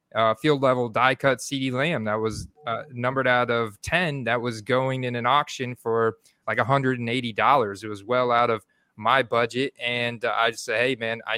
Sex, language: male, English